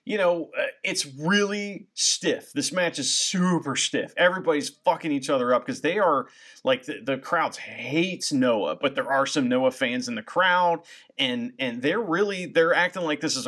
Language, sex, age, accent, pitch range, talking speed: English, male, 30-49, American, 170-250 Hz, 190 wpm